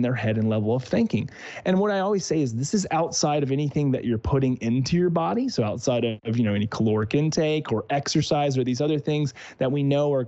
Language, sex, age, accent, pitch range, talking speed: English, male, 30-49, American, 120-160 Hz, 240 wpm